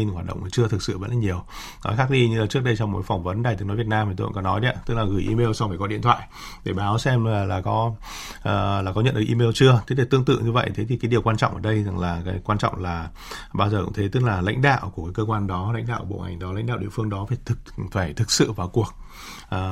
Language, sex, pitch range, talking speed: Vietnamese, male, 100-120 Hz, 305 wpm